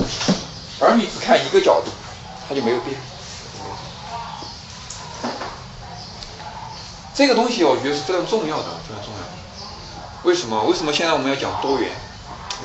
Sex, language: male, Chinese